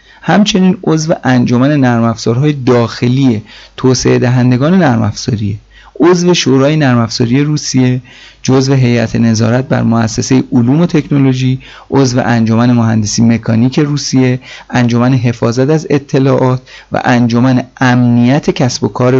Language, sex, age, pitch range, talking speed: Persian, male, 30-49, 120-140 Hz, 110 wpm